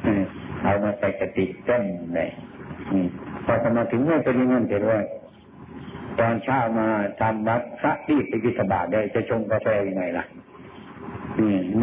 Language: Thai